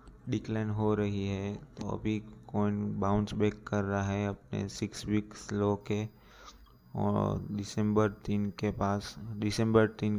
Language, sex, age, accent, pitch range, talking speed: Hindi, male, 20-39, native, 95-105 Hz, 140 wpm